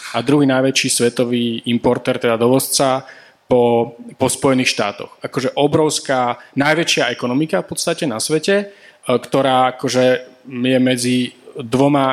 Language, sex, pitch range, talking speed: Slovak, male, 120-140 Hz, 120 wpm